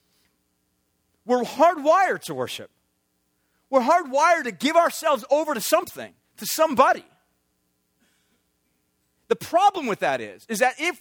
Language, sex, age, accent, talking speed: English, male, 40-59, American, 120 wpm